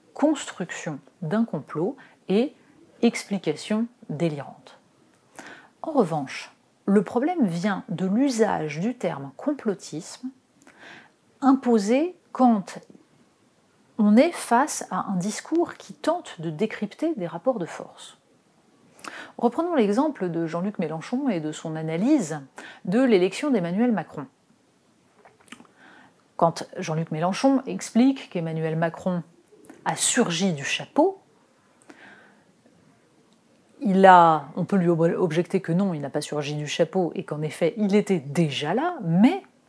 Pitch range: 165-240 Hz